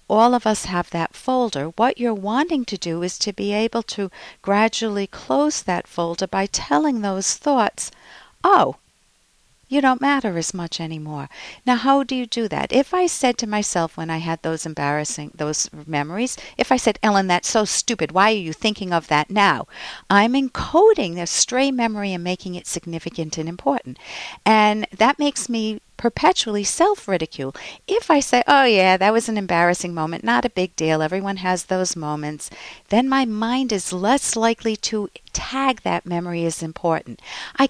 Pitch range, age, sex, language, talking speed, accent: 175-245 Hz, 50-69, female, English, 175 wpm, American